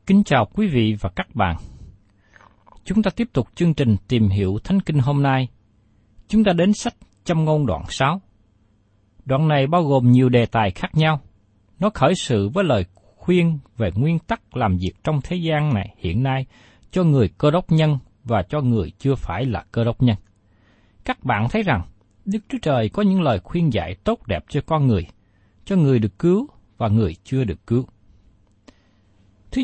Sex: male